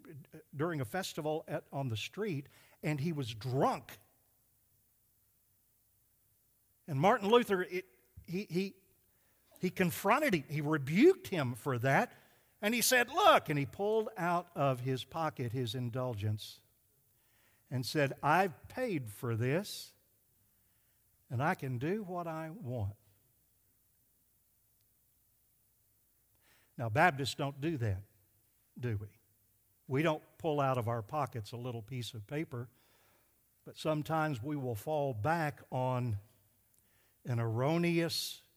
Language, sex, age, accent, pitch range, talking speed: English, male, 60-79, American, 110-155 Hz, 120 wpm